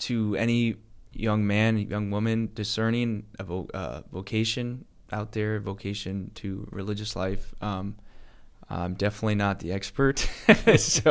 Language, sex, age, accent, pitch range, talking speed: English, male, 20-39, American, 100-115 Hz, 130 wpm